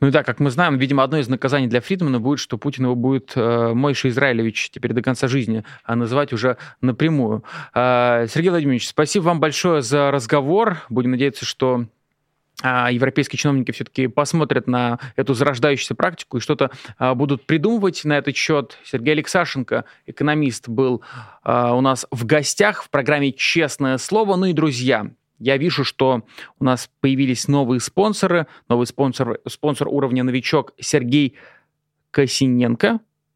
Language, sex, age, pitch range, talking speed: Russian, male, 20-39, 125-155 Hz, 155 wpm